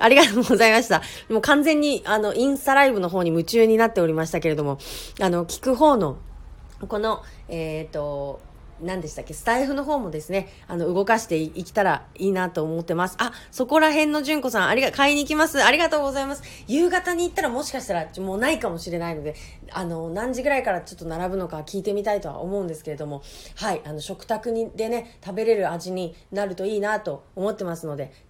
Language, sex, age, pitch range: Japanese, female, 30-49, 165-245 Hz